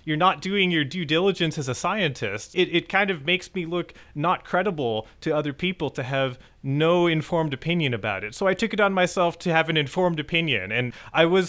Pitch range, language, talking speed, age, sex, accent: 125-170 Hz, English, 220 wpm, 30-49, male, American